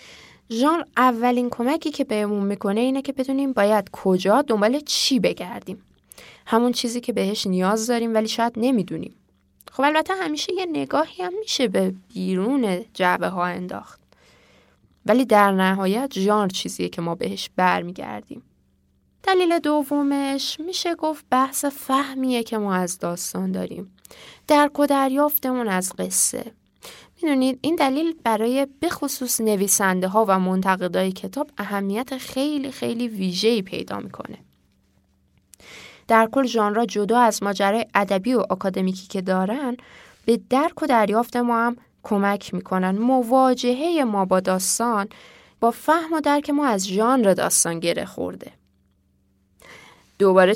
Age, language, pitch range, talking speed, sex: 10-29, Persian, 190-275 Hz, 130 wpm, female